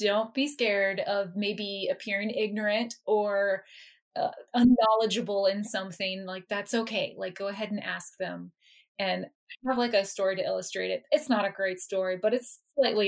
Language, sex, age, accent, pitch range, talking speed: English, female, 20-39, American, 190-230 Hz, 170 wpm